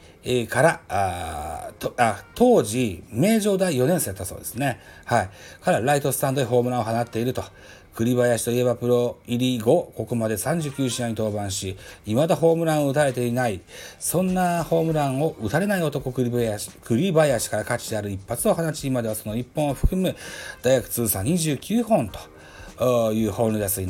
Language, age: Japanese, 40-59